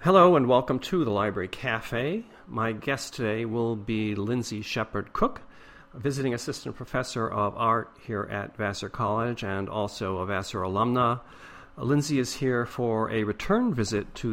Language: English